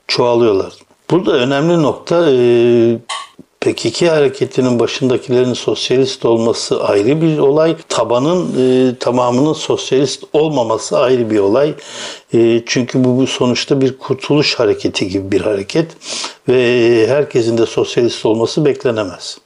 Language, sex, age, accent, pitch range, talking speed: Turkish, male, 60-79, native, 115-140 Hz, 125 wpm